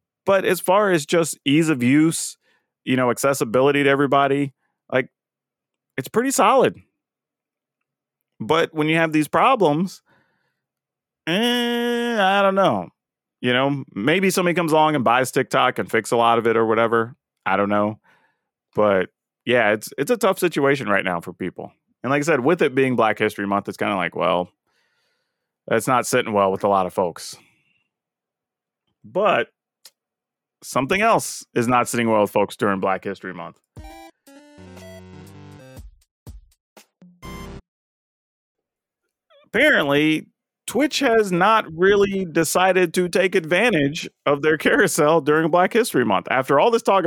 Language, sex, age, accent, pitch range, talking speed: English, male, 30-49, American, 115-180 Hz, 145 wpm